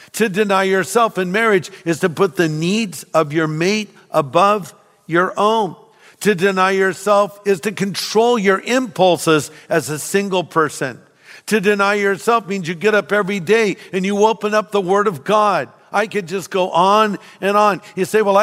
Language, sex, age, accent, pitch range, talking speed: English, male, 50-69, American, 155-205 Hz, 180 wpm